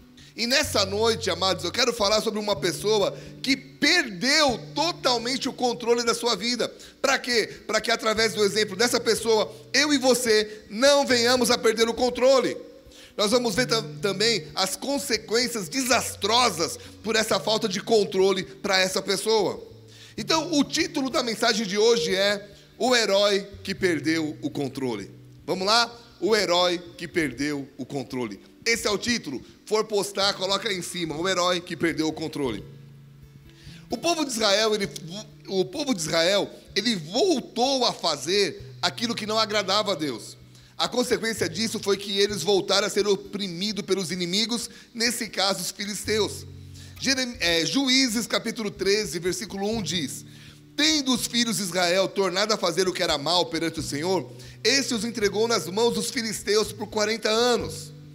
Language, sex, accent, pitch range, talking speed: Portuguese, male, Brazilian, 180-235 Hz, 160 wpm